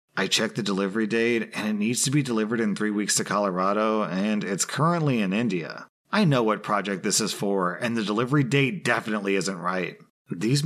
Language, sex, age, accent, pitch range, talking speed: English, male, 30-49, American, 105-130 Hz, 205 wpm